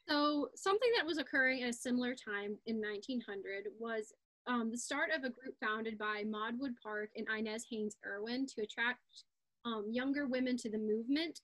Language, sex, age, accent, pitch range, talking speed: English, female, 10-29, American, 215-255 Hz, 185 wpm